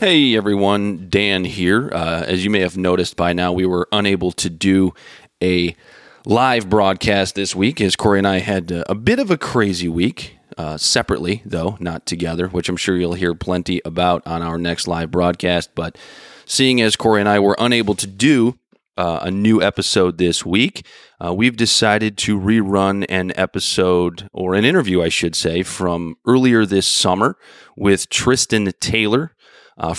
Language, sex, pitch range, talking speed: English, male, 90-110 Hz, 175 wpm